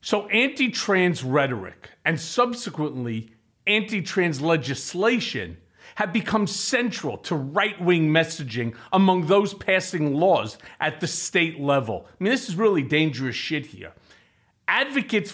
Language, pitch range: English, 150-205 Hz